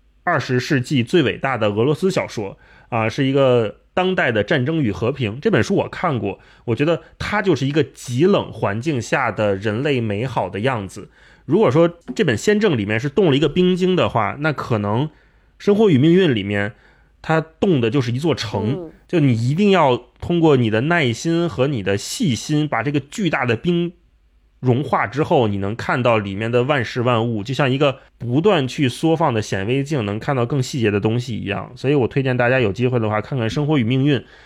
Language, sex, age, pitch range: Chinese, male, 20-39, 115-160 Hz